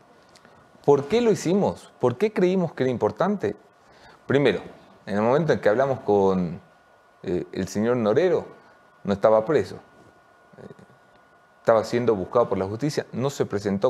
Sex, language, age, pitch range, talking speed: male, English, 30-49, 105-145 Hz, 140 wpm